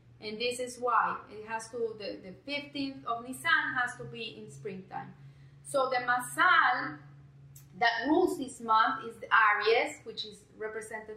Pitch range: 215-275 Hz